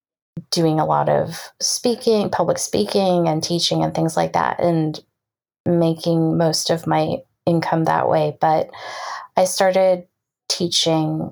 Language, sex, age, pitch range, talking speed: English, female, 30-49, 160-185 Hz, 135 wpm